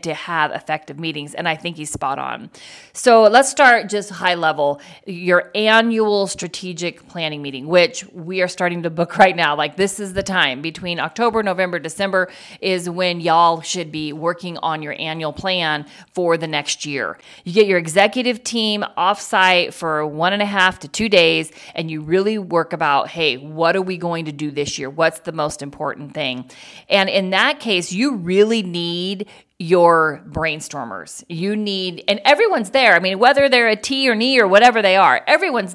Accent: American